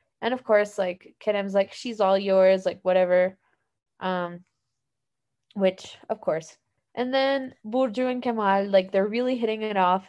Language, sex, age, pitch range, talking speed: English, female, 20-39, 185-220 Hz, 155 wpm